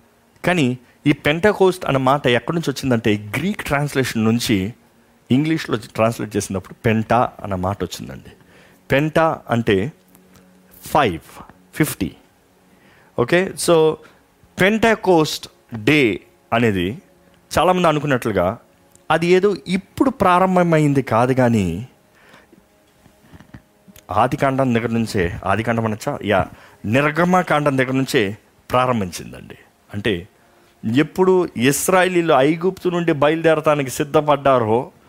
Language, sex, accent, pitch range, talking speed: Telugu, male, native, 115-175 Hz, 90 wpm